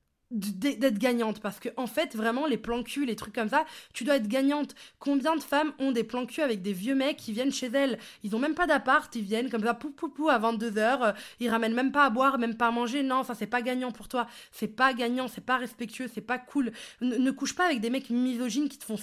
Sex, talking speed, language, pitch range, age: female, 265 wpm, French, 220-270 Hz, 20-39